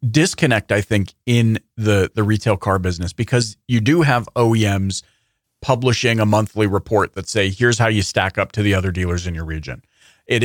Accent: American